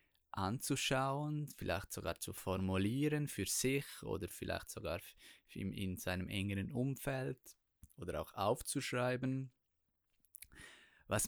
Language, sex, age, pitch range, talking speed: German, male, 20-39, 100-125 Hz, 95 wpm